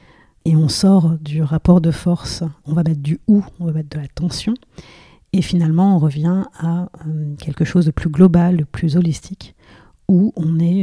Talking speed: 195 wpm